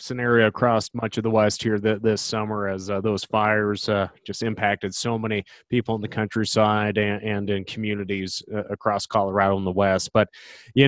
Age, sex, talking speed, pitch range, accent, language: 30-49, male, 195 wpm, 120-150 Hz, American, English